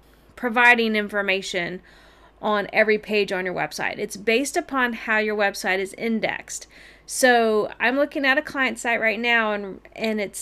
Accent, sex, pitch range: American, female, 200-230 Hz